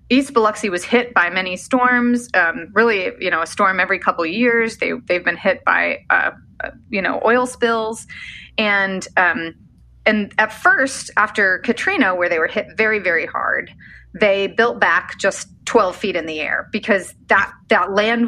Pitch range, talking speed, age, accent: 175-235 Hz, 180 wpm, 30-49, American